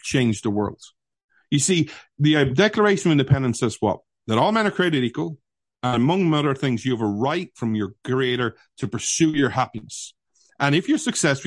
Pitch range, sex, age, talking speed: 125-165 Hz, male, 40-59, 190 wpm